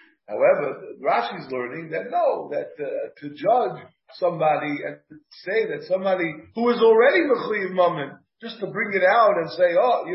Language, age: English, 50-69